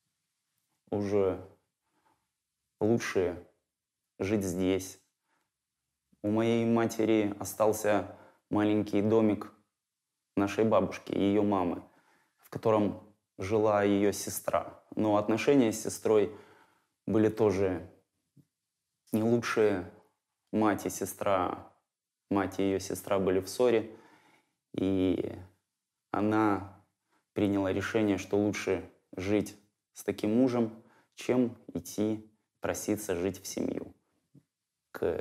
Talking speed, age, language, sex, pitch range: 95 wpm, 20-39, Russian, male, 100-110 Hz